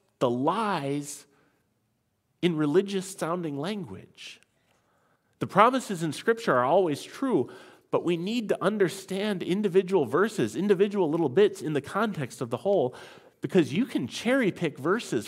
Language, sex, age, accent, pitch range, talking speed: English, male, 40-59, American, 145-205 Hz, 130 wpm